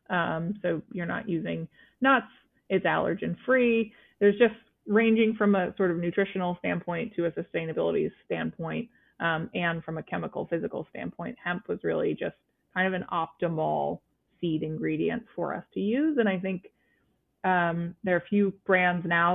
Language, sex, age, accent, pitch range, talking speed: English, female, 20-39, American, 170-205 Hz, 165 wpm